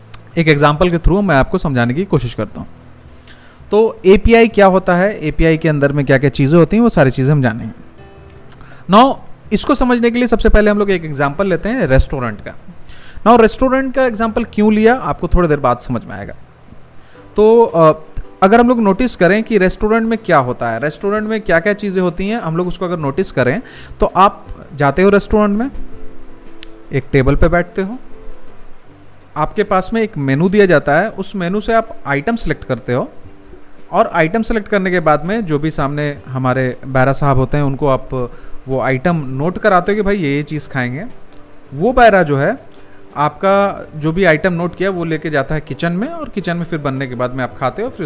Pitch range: 135-210 Hz